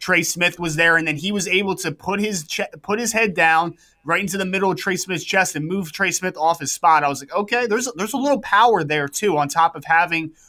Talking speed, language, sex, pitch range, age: 275 wpm, English, male, 155-190 Hz, 20-39